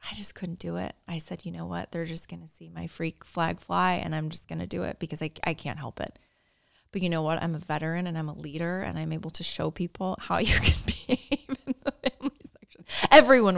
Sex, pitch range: female, 160-215 Hz